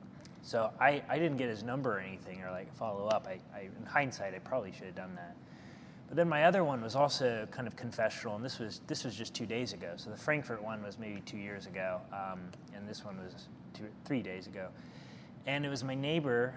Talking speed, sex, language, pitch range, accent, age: 230 wpm, male, English, 105-125 Hz, American, 20-39